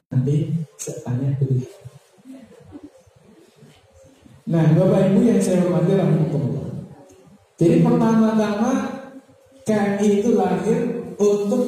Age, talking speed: 50-69, 75 wpm